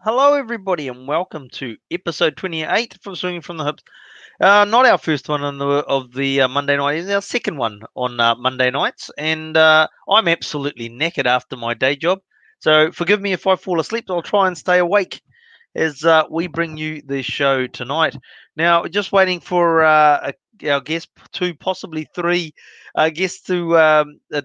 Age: 30-49